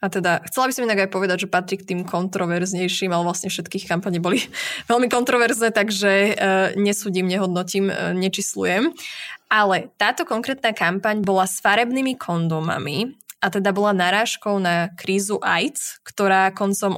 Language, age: Slovak, 20-39